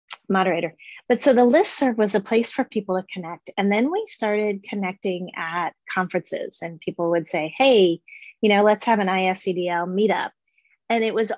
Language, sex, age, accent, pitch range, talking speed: English, female, 30-49, American, 180-225 Hz, 180 wpm